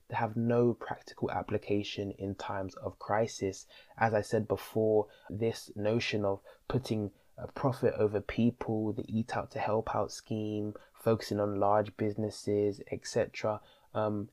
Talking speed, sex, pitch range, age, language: 140 wpm, male, 100-115 Hz, 20-39, English